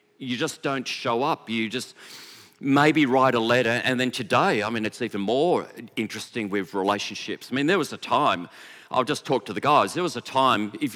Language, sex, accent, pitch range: English, male, Australian, 120-185 Hz